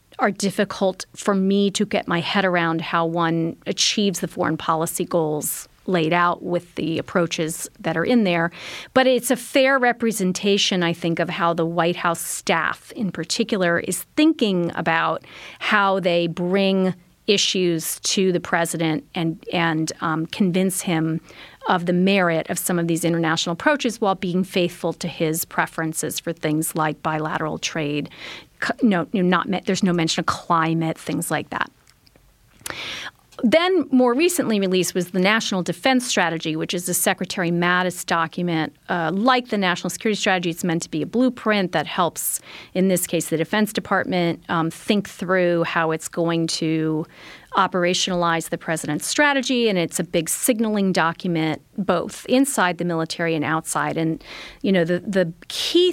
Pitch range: 165-210 Hz